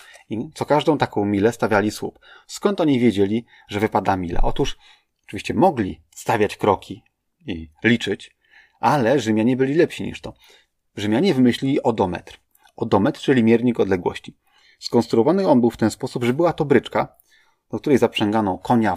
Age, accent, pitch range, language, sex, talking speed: 30-49, native, 105-135 Hz, Polish, male, 145 wpm